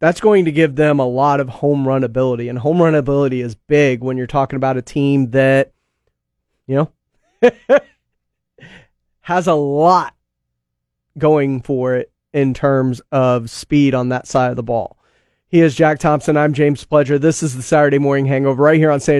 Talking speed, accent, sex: 185 wpm, American, male